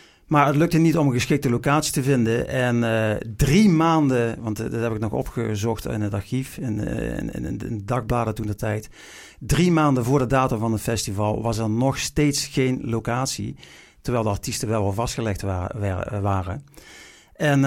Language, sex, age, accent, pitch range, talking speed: Dutch, male, 50-69, Dutch, 105-130 Hz, 185 wpm